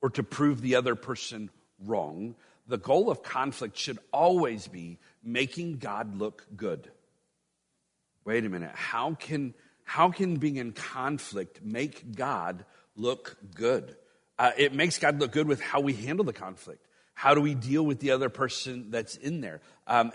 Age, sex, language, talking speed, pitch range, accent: 40-59, male, English, 165 wpm, 125-175 Hz, American